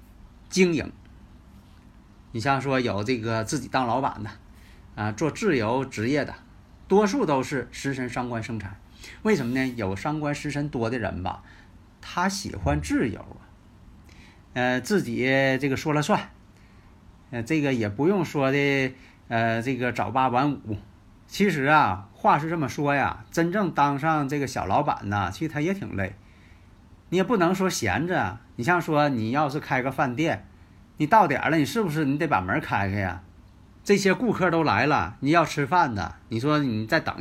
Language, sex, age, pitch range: Chinese, male, 50-69, 105-155 Hz